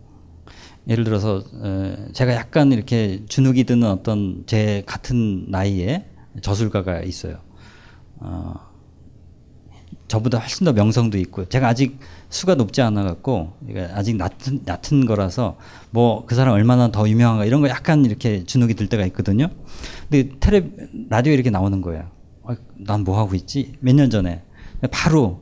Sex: male